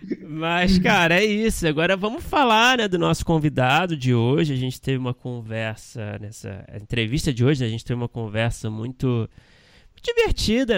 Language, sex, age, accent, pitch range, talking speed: Portuguese, male, 20-39, Brazilian, 110-145 Hz, 165 wpm